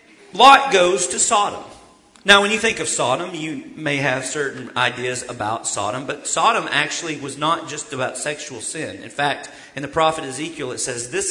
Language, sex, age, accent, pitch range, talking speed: English, male, 40-59, American, 140-225 Hz, 185 wpm